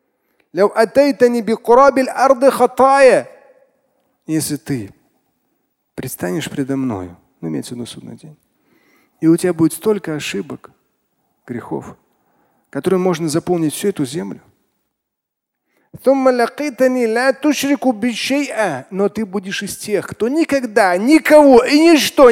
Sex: male